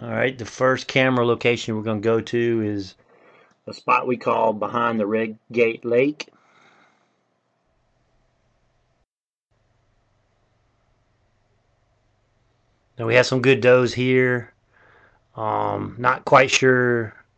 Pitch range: 110-125 Hz